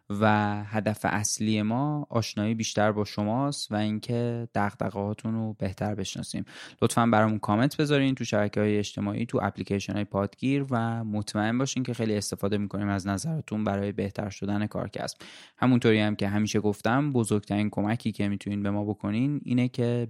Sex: male